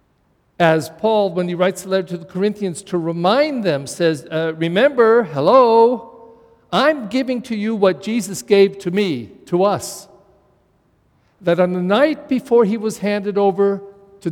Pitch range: 180-230 Hz